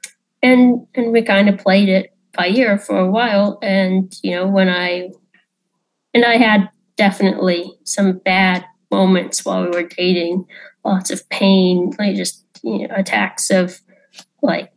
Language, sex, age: English, female, 20-39